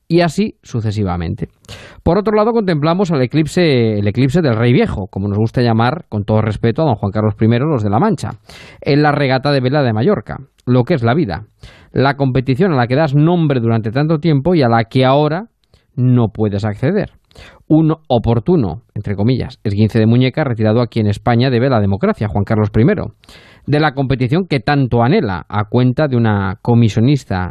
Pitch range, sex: 110-155 Hz, male